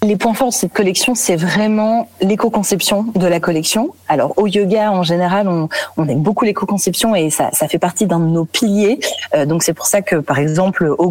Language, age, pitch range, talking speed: French, 30-49, 175-215 Hz, 215 wpm